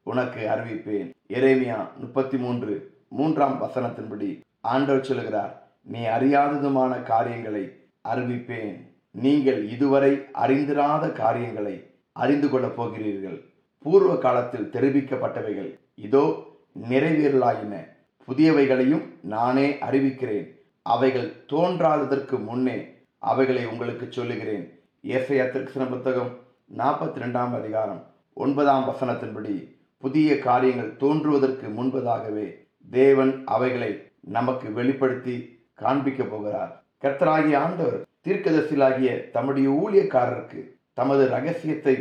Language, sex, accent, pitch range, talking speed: Tamil, male, native, 120-140 Hz, 80 wpm